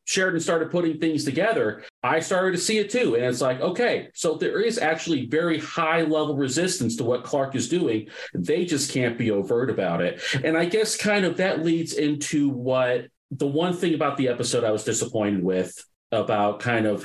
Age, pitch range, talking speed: 40-59, 110-155 Hz, 200 wpm